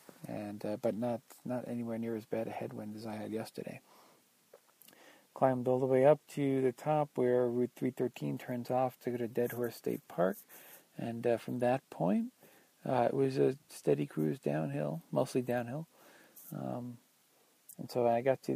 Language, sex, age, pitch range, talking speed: English, male, 40-59, 110-135 Hz, 180 wpm